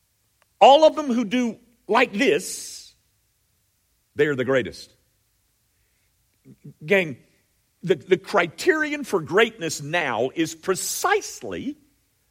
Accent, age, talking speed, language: American, 50-69, 95 wpm, English